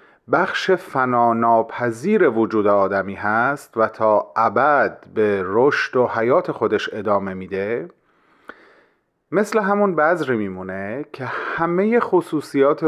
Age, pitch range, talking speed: 40-59, 110-150 Hz, 100 wpm